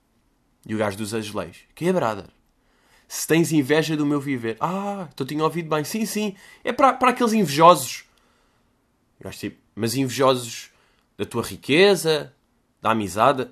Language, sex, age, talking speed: Portuguese, male, 20-39, 155 wpm